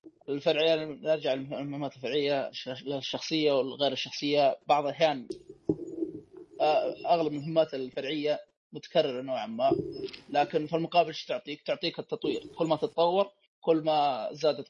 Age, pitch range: 20-39, 150-200 Hz